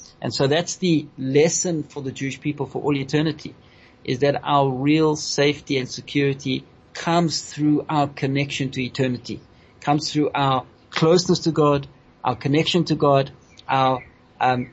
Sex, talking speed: male, 150 wpm